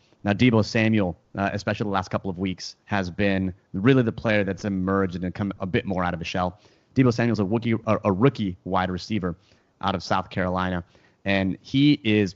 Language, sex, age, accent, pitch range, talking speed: English, male, 30-49, American, 95-110 Hz, 200 wpm